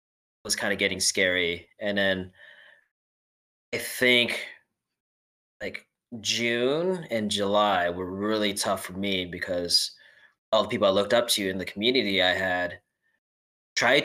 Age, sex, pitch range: 20-39, male, 90-120 Hz